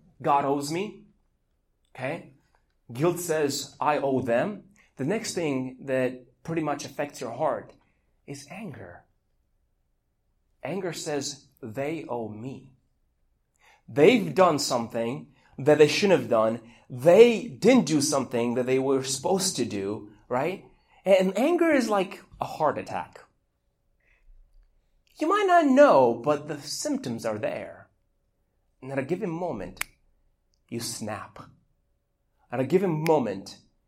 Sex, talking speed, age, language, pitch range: male, 125 wpm, 30-49, English, 115-160 Hz